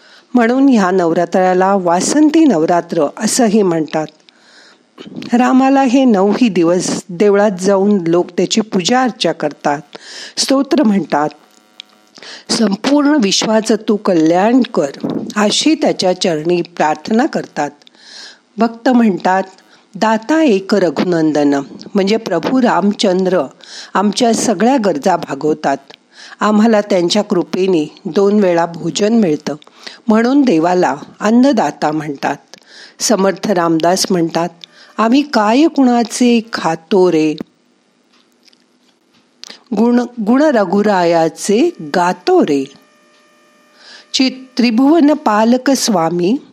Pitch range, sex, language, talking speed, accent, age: 175-245 Hz, female, Marathi, 80 wpm, native, 50-69